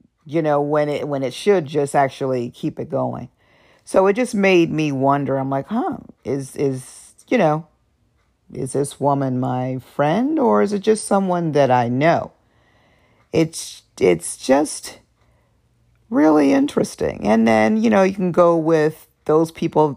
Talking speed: 160 wpm